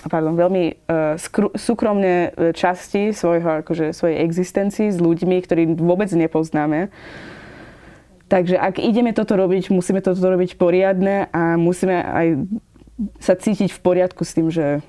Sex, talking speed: female, 140 wpm